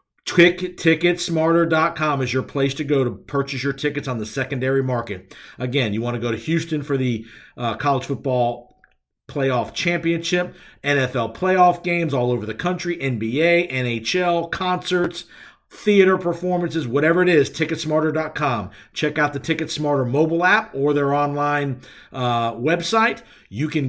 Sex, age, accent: male, 50-69, American